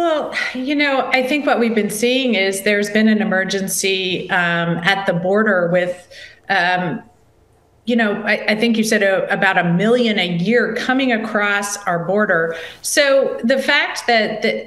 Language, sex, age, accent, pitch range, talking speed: English, female, 40-59, American, 180-230 Hz, 170 wpm